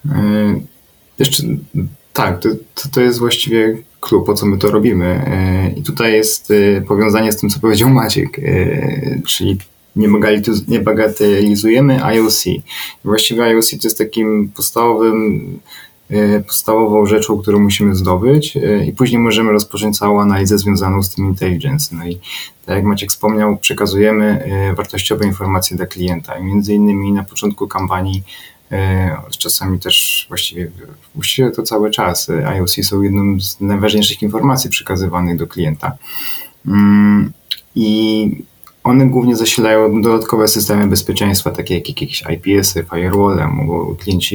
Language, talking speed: Polish, 125 wpm